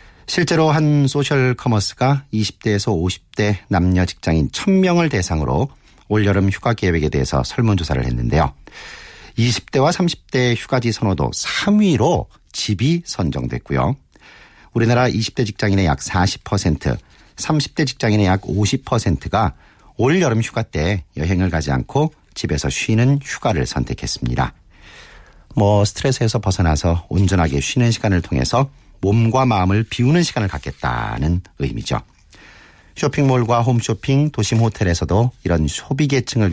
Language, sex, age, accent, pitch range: Korean, male, 40-59, native, 90-135 Hz